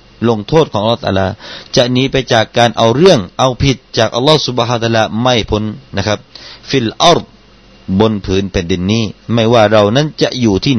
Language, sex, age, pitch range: Thai, male, 30-49, 105-130 Hz